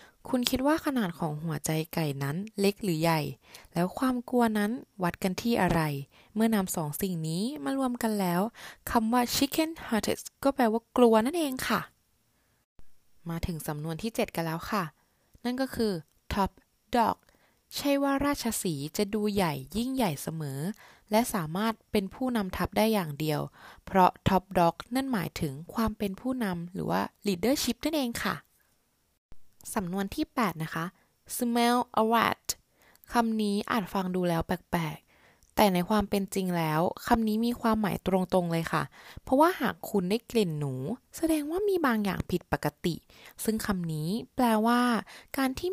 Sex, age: female, 20-39